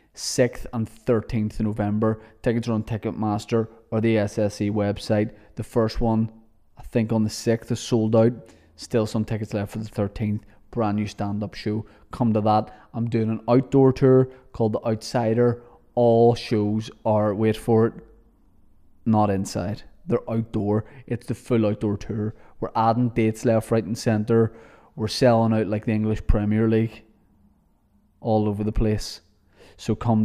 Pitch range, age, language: 105-125 Hz, 20-39, English